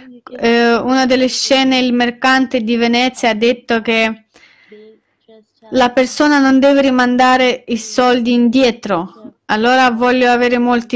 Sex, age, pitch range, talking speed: female, 20-39, 215-250 Hz, 125 wpm